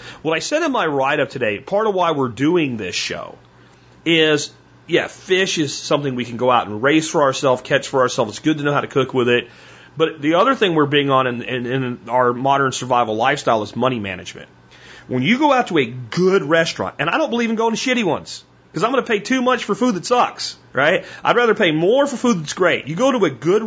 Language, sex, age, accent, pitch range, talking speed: English, male, 40-59, American, 125-190 Hz, 250 wpm